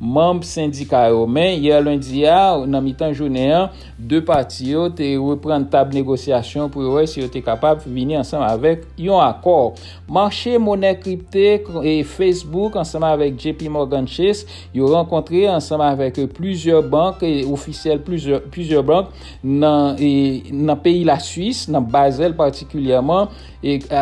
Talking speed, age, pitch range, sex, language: 135 wpm, 60-79, 135-160 Hz, male, English